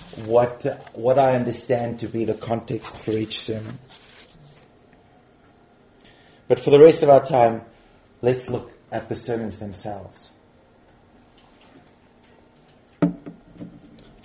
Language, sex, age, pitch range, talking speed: English, male, 30-49, 110-135 Hz, 105 wpm